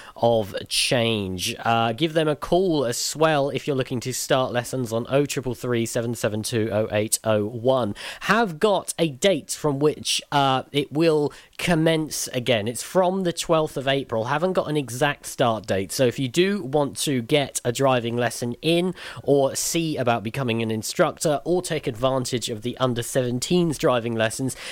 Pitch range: 115-150 Hz